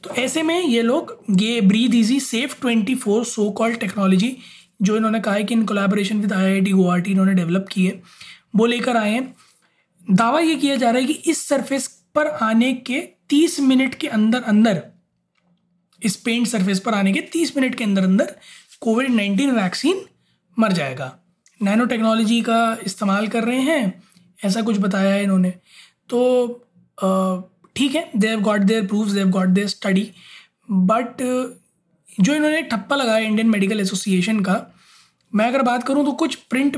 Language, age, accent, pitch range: Hindi, 20-39, native, 195-250 Hz